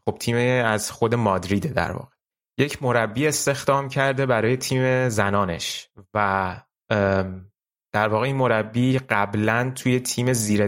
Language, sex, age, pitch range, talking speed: Persian, male, 30-49, 100-130 Hz, 130 wpm